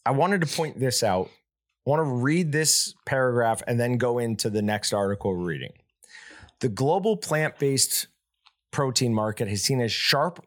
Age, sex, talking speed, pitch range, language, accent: 30-49, male, 180 wpm, 110-140 Hz, English, American